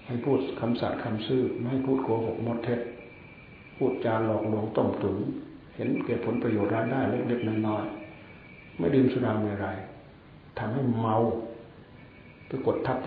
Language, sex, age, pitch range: Thai, male, 60-79, 105-130 Hz